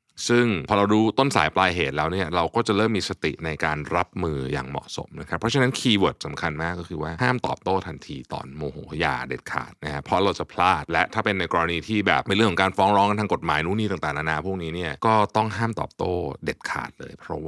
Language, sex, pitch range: Thai, male, 80-105 Hz